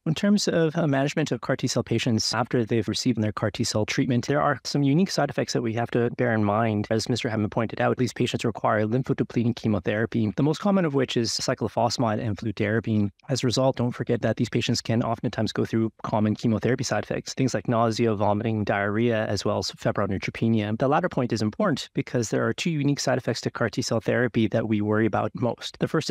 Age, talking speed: 20-39, 225 wpm